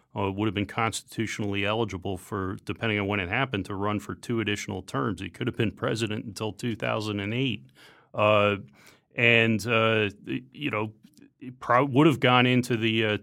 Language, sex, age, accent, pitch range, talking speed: English, male, 40-59, American, 100-130 Hz, 170 wpm